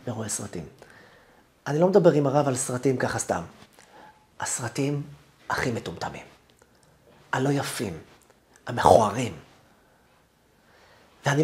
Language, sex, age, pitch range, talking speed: Hebrew, male, 30-49, 135-200 Hz, 95 wpm